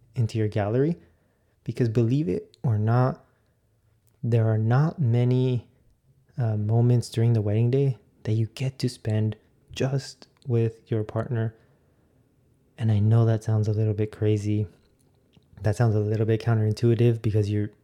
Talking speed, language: 150 wpm, English